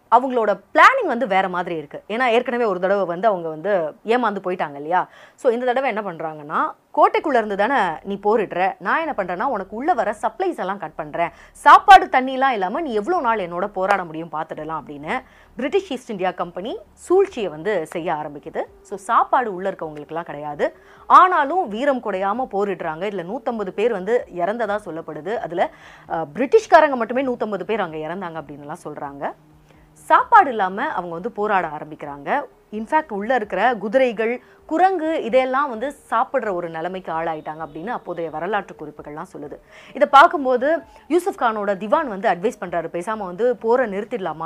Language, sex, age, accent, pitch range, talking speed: English, female, 30-49, Indian, 165-255 Hz, 130 wpm